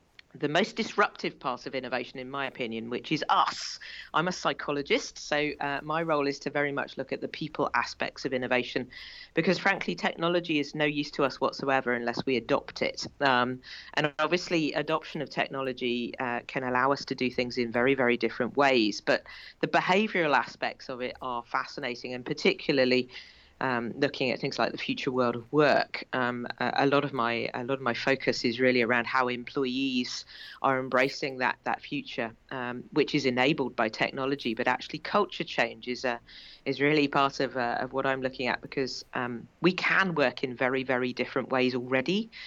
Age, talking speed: 40-59, 190 wpm